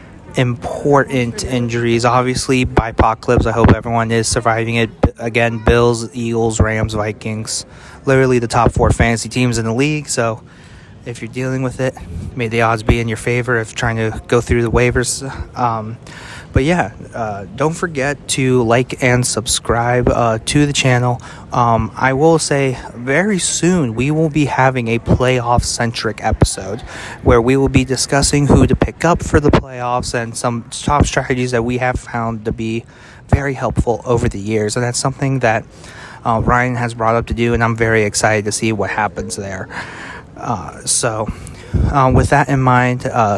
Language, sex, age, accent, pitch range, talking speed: English, male, 30-49, American, 115-130 Hz, 175 wpm